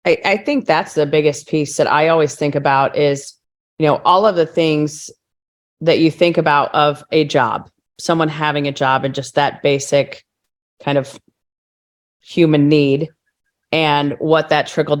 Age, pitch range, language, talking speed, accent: 30-49, 150-170 Hz, English, 170 wpm, American